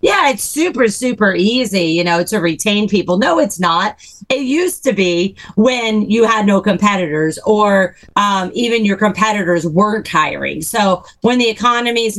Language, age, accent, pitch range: English, 40-59, American, 175-220 Hz